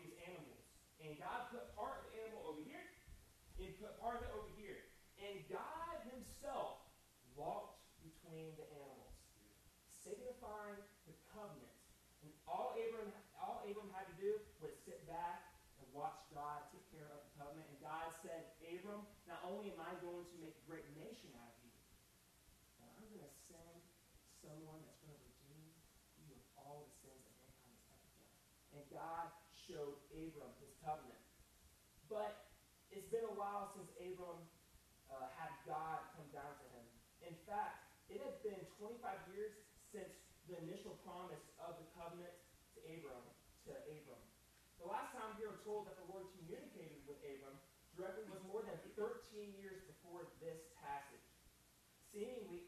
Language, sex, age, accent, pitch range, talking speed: English, male, 30-49, American, 155-205 Hz, 160 wpm